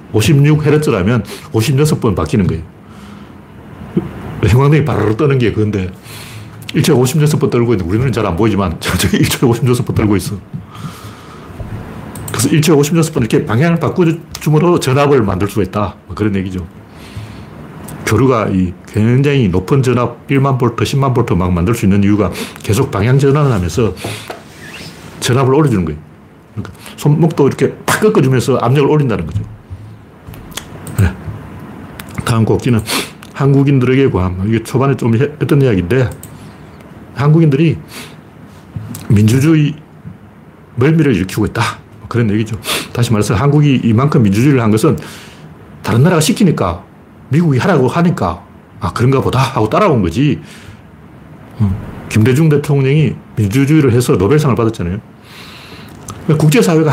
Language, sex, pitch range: Korean, male, 105-145 Hz